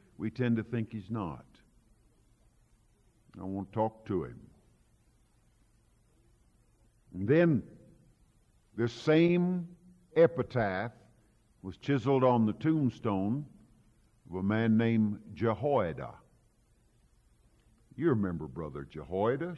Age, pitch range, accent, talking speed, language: 50-69, 110-165 Hz, American, 90 wpm, English